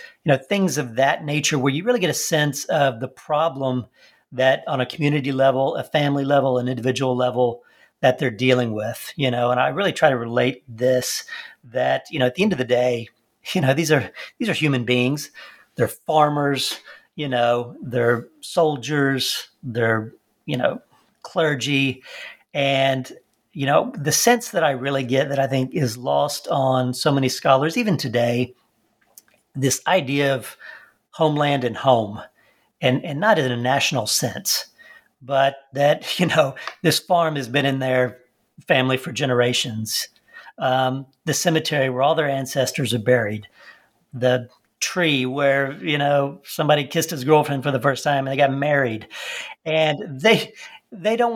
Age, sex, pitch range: 40-59, male, 125-155 Hz